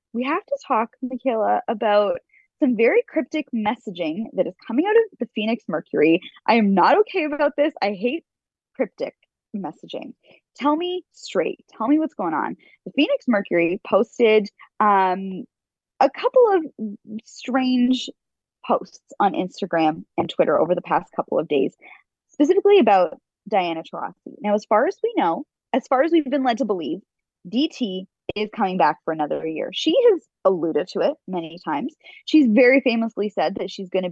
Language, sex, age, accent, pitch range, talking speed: English, female, 20-39, American, 200-300 Hz, 170 wpm